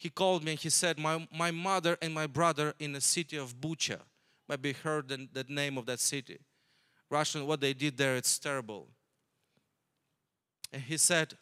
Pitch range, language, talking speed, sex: 145-190 Hz, English, 185 wpm, male